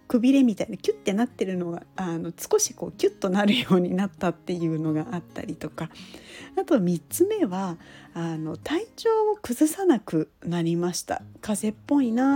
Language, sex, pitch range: Japanese, female, 180-275 Hz